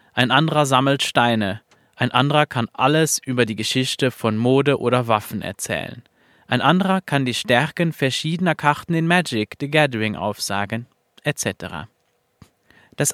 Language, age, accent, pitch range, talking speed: German, 30-49, German, 115-150 Hz, 135 wpm